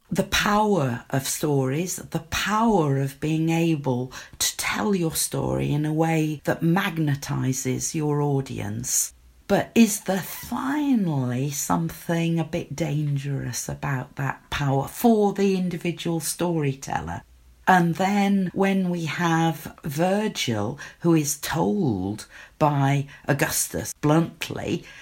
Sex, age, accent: female, 50-69, British